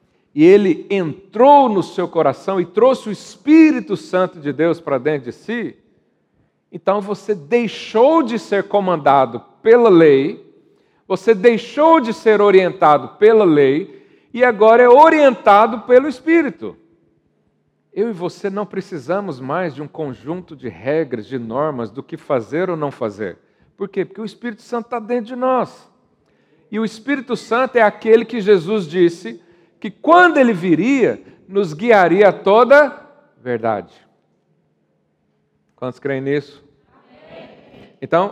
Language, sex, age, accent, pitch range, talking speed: Portuguese, male, 50-69, Brazilian, 165-245 Hz, 140 wpm